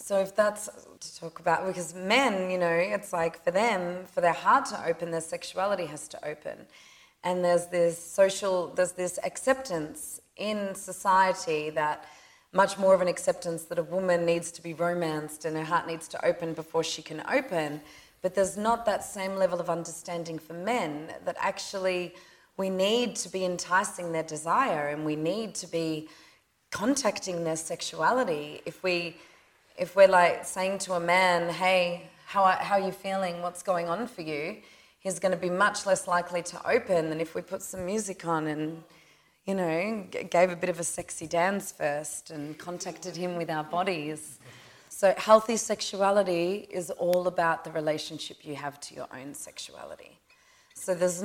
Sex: female